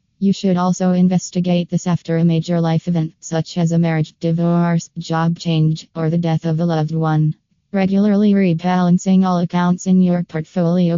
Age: 20-39